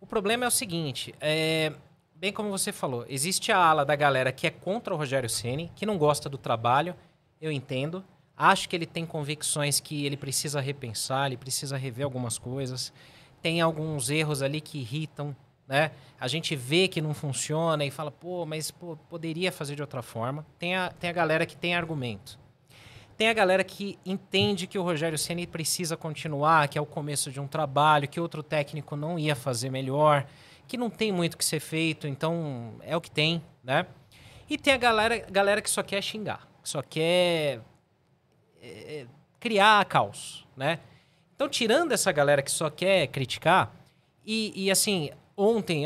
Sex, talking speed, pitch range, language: male, 180 wpm, 140-180 Hz, Portuguese